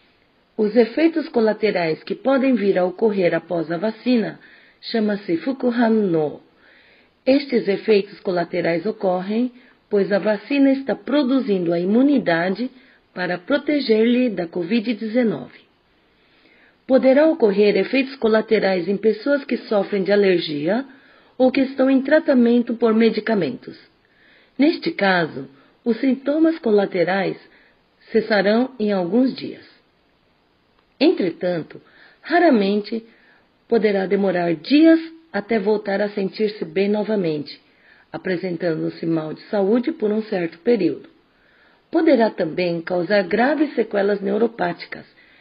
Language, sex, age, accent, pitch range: Japanese, female, 40-59, Brazilian, 190-255 Hz